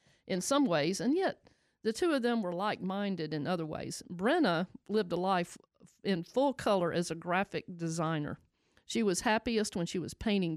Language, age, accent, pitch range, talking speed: English, 50-69, American, 175-225 Hz, 180 wpm